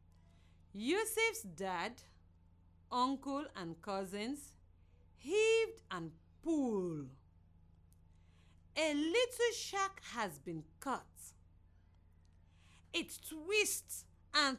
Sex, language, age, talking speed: female, English, 50-69, 70 wpm